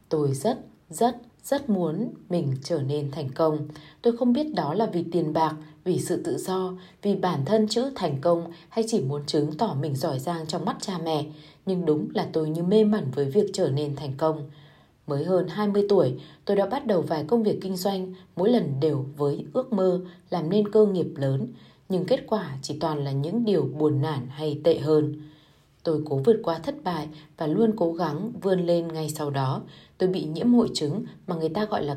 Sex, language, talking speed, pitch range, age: female, Vietnamese, 215 wpm, 150-200 Hz, 20-39